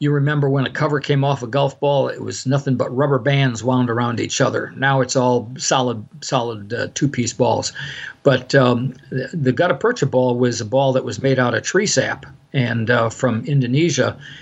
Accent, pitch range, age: American, 125-140 Hz, 50-69